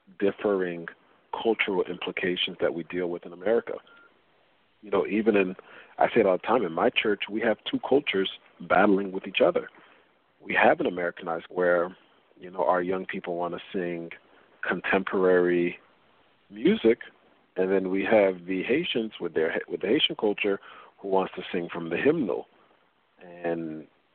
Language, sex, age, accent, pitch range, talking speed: English, male, 40-59, American, 85-100 Hz, 160 wpm